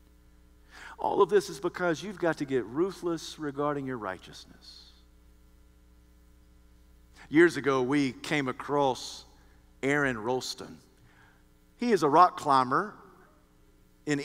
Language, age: English, 50-69